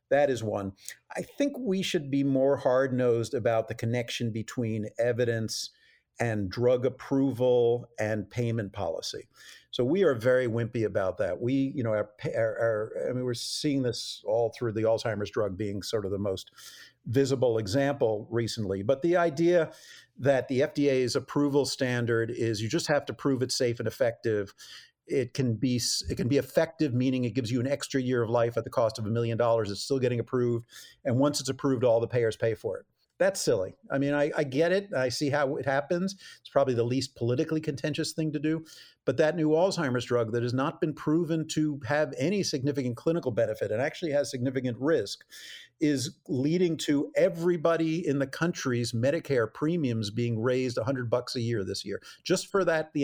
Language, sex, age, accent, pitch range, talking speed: English, male, 50-69, American, 115-150 Hz, 195 wpm